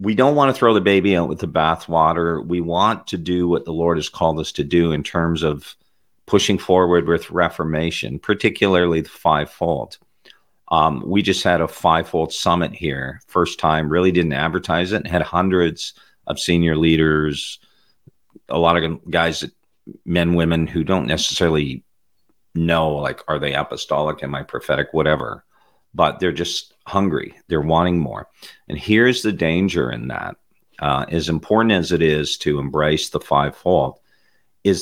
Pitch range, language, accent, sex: 75-90 Hz, English, American, male